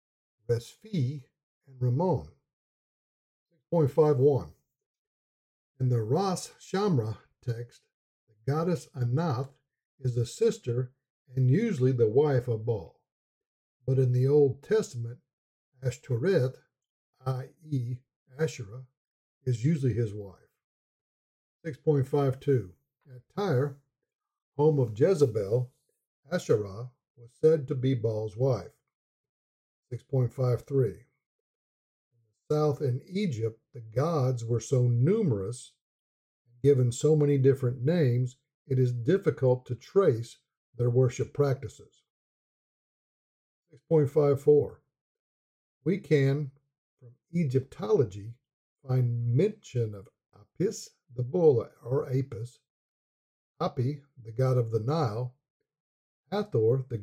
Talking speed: 95 wpm